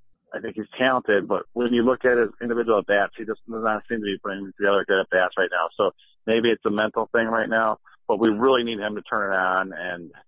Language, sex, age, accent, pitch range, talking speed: English, male, 40-59, American, 100-115 Hz, 270 wpm